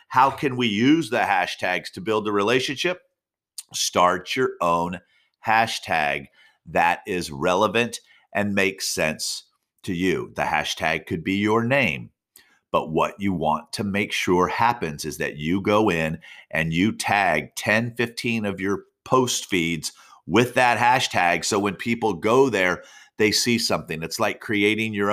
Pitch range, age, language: 95-120 Hz, 50-69, English